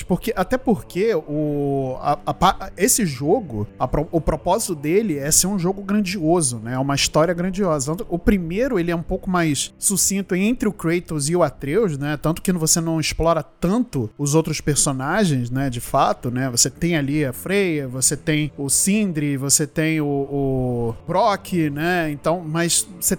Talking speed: 175 wpm